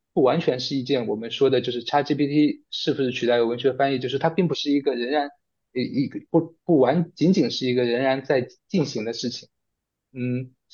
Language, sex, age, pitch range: Chinese, male, 20-39, 125-155 Hz